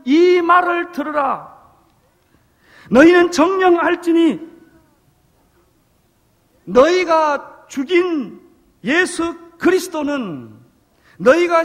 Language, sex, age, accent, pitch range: Korean, male, 40-59, native, 205-340 Hz